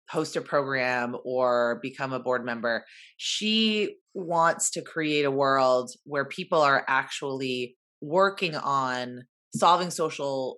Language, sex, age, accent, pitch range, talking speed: English, female, 30-49, American, 130-165 Hz, 125 wpm